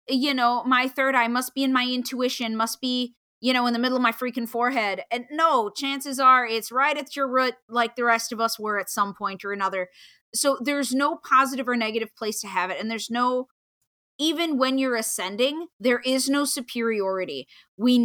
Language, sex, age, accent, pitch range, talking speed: English, female, 30-49, American, 215-265 Hz, 210 wpm